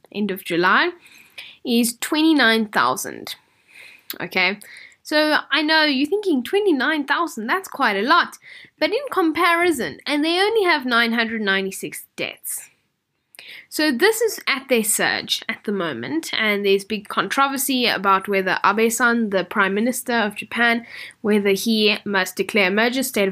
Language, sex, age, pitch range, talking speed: English, female, 10-29, 220-305 Hz, 135 wpm